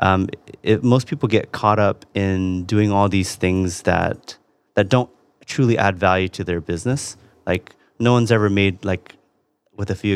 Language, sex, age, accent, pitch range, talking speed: English, male, 30-49, American, 90-105 Hz, 175 wpm